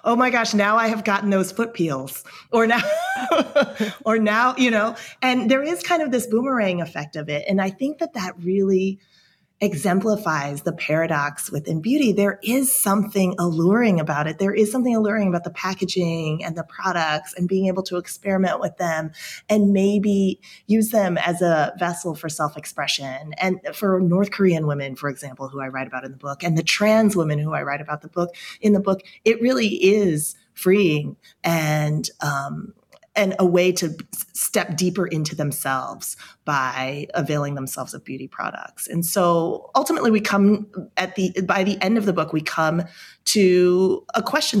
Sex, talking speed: female, 180 wpm